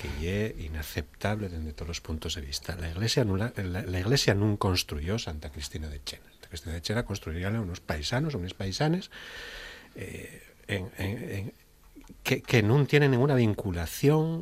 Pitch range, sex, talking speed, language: 90-110 Hz, male, 165 wpm, Spanish